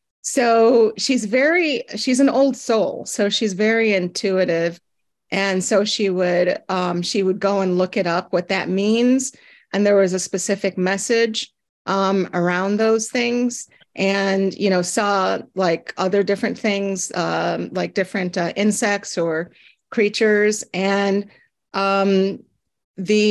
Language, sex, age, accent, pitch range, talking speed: English, female, 40-59, American, 185-220 Hz, 140 wpm